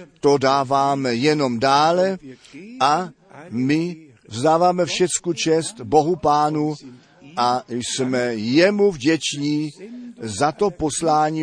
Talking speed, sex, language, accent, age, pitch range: 95 wpm, male, Czech, native, 50-69, 135-165 Hz